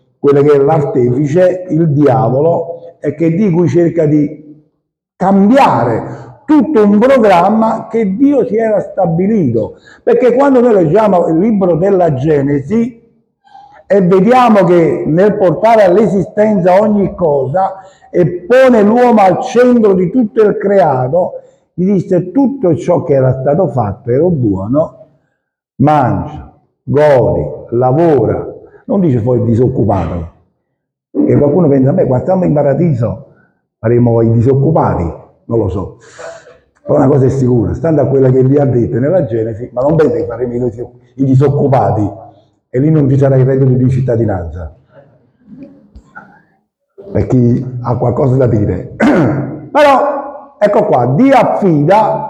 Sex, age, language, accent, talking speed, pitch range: male, 50-69, Italian, native, 135 wpm, 130-210 Hz